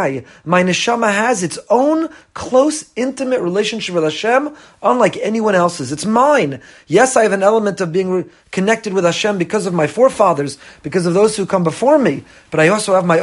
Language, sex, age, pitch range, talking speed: English, male, 30-49, 175-245 Hz, 190 wpm